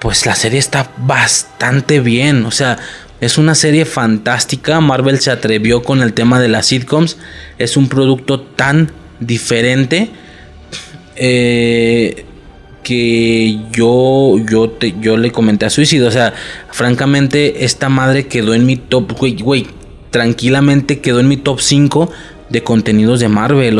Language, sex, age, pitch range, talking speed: Spanish, male, 20-39, 115-140 Hz, 145 wpm